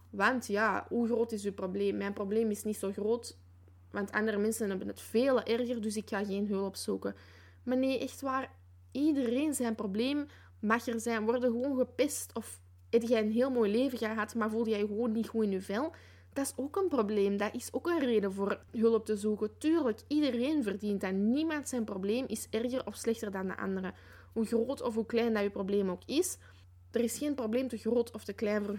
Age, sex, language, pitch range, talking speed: 10-29, female, Dutch, 200-235 Hz, 220 wpm